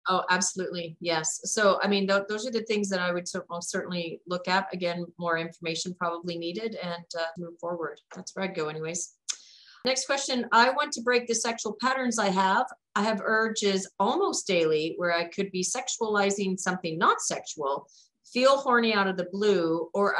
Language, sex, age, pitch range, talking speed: English, female, 40-59, 175-220 Hz, 185 wpm